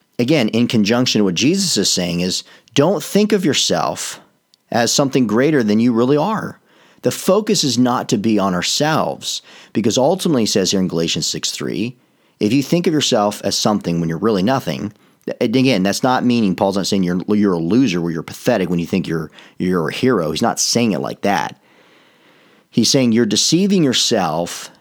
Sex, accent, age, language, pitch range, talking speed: male, American, 40-59, English, 90-125 Hz, 195 wpm